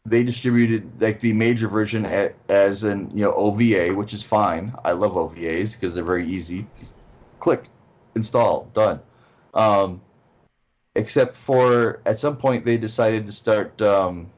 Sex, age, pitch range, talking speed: male, 30-49, 90-115 Hz, 145 wpm